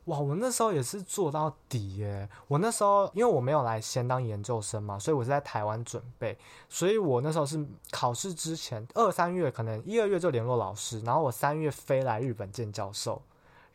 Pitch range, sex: 110-140 Hz, male